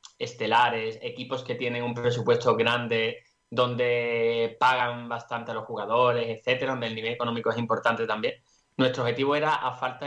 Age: 20-39